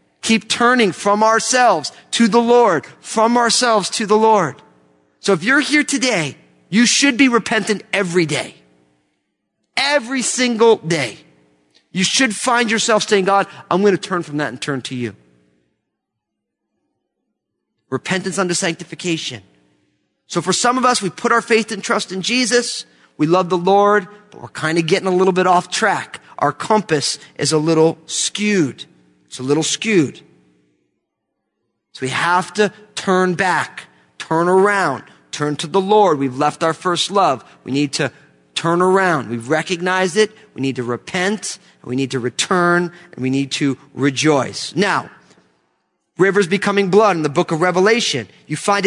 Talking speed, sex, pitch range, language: 160 wpm, male, 145-215 Hz, English